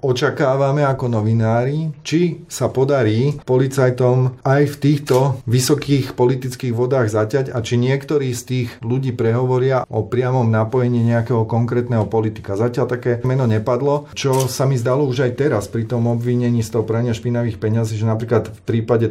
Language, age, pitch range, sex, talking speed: Slovak, 40-59, 110-125 Hz, male, 155 wpm